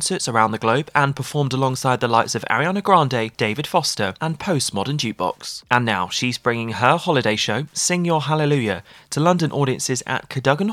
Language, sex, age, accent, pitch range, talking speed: English, male, 20-39, British, 110-150 Hz, 175 wpm